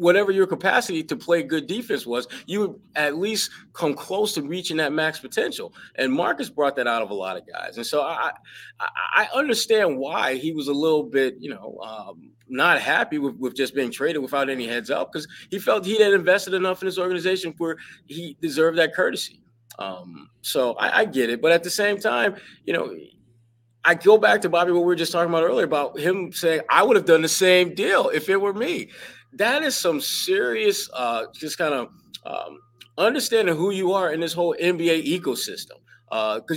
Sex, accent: male, American